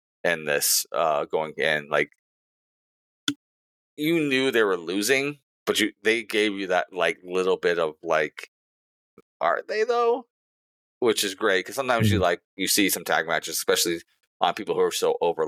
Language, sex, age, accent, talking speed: English, male, 30-49, American, 170 wpm